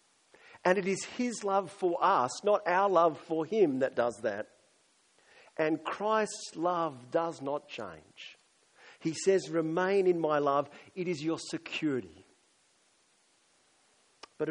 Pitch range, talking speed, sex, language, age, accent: 140-180 Hz, 130 wpm, male, English, 50-69, Australian